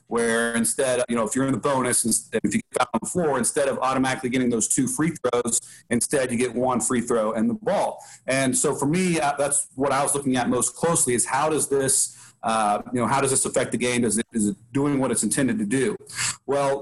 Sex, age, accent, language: male, 40-59, American, English